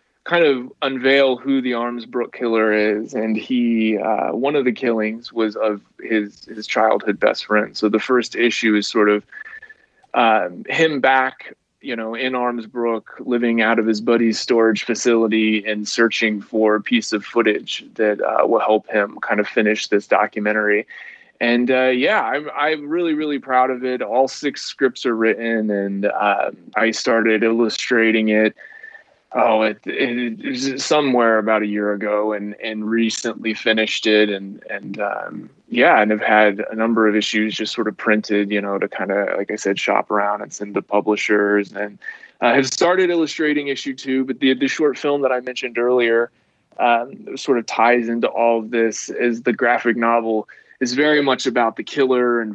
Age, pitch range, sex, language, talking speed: 20-39, 110-130 Hz, male, English, 185 wpm